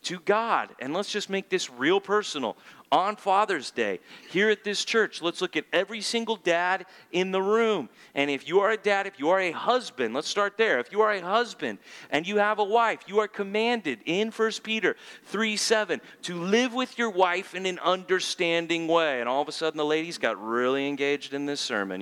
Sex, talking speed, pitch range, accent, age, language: male, 220 wpm, 150-220 Hz, American, 40-59, English